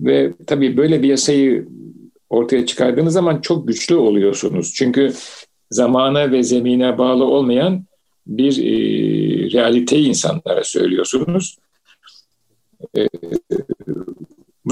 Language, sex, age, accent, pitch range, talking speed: Turkish, male, 50-69, native, 125-175 Hz, 95 wpm